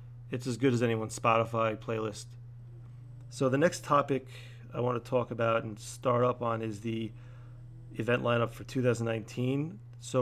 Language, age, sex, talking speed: English, 40-59, male, 160 wpm